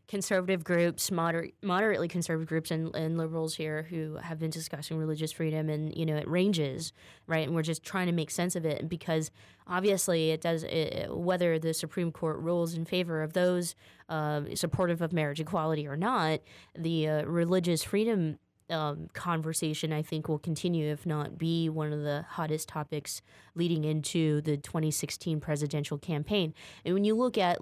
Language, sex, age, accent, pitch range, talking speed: English, female, 20-39, American, 150-170 Hz, 170 wpm